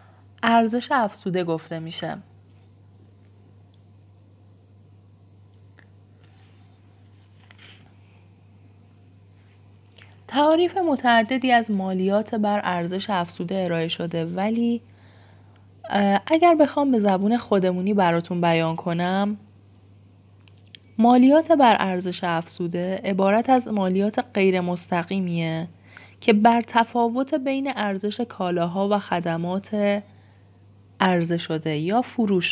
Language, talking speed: Persian, 80 wpm